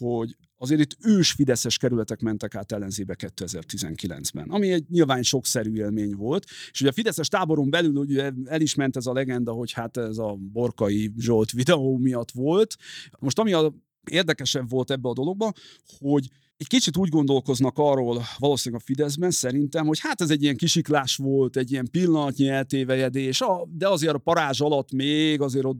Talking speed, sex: 170 wpm, male